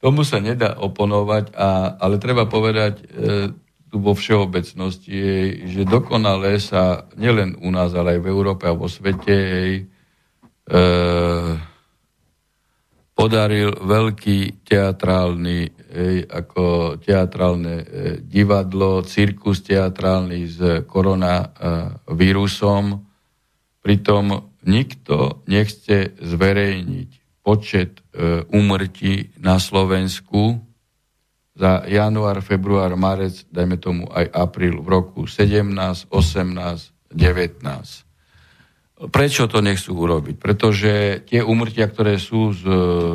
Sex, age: male, 50-69